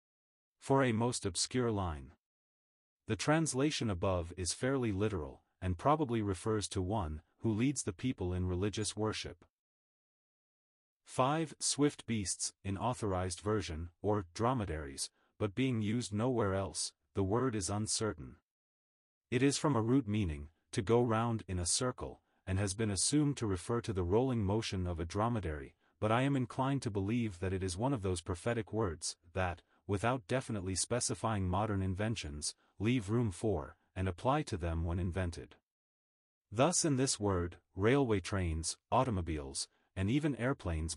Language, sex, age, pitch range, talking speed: English, male, 30-49, 90-120 Hz, 150 wpm